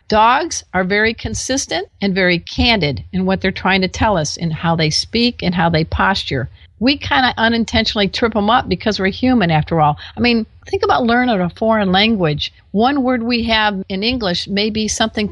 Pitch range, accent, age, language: 180-230 Hz, American, 50-69, English